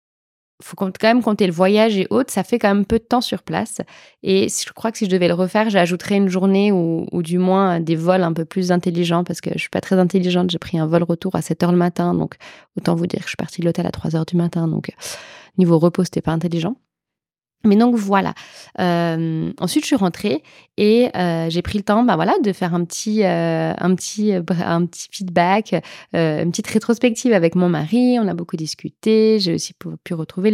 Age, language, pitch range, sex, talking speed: 20-39, English, 175-205 Hz, female, 230 wpm